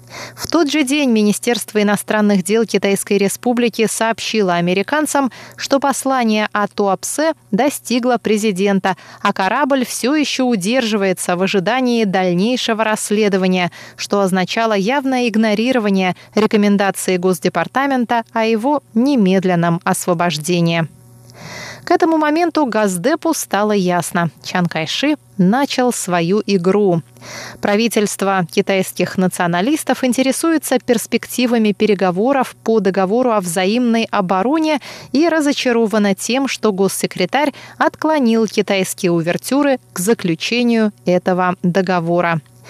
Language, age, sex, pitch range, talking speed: Russian, 20-39, female, 185-250 Hz, 95 wpm